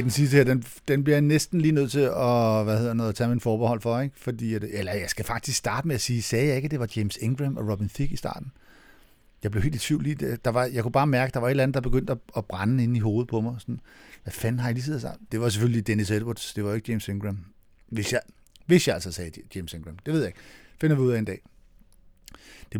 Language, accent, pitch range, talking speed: Danish, native, 105-135 Hz, 285 wpm